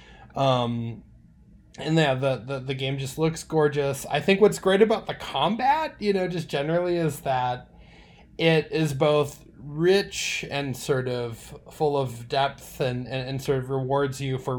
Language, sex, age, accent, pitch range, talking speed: English, male, 20-39, American, 135-185 Hz, 170 wpm